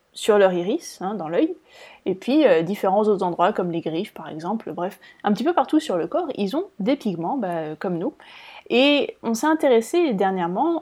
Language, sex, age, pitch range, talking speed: French, female, 20-39, 185-275 Hz, 205 wpm